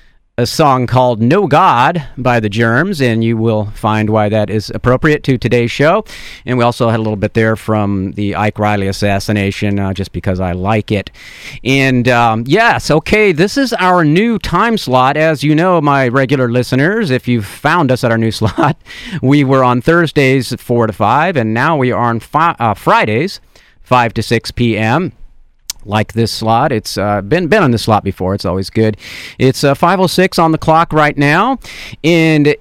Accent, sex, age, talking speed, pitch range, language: American, male, 40-59, 195 wpm, 110-150 Hz, English